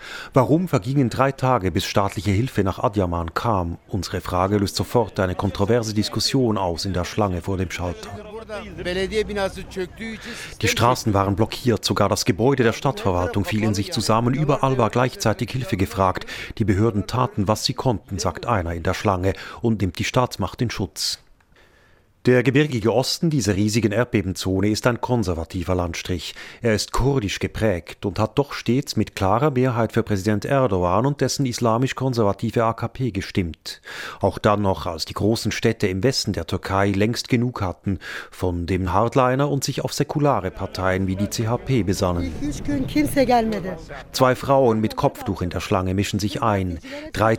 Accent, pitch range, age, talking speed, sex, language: German, 95-130 Hz, 40-59, 160 wpm, male, German